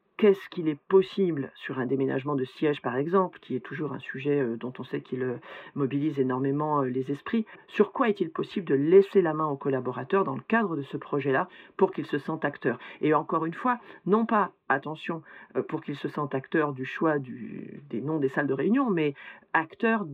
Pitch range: 135-185 Hz